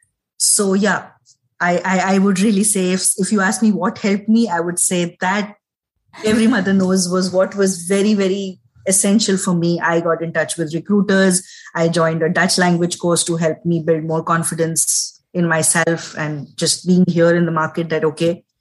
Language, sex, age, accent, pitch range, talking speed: English, female, 20-39, Indian, 160-195 Hz, 195 wpm